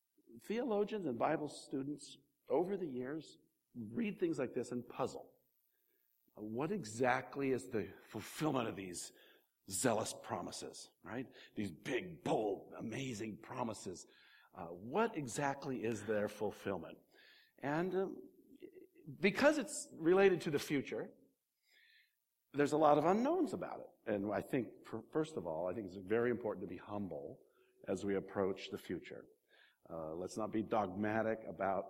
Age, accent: 60-79, American